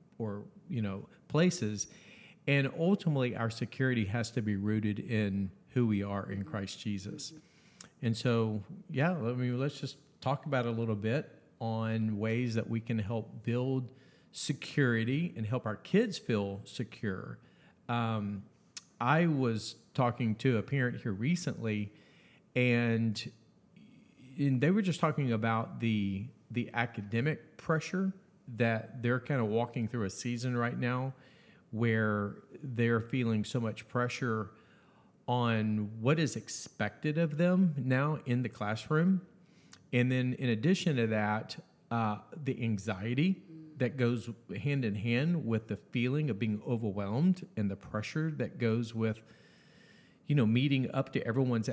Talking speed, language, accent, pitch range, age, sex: 145 wpm, English, American, 110-145 Hz, 40-59, male